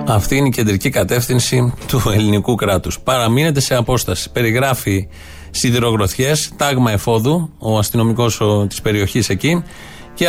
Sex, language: male, Greek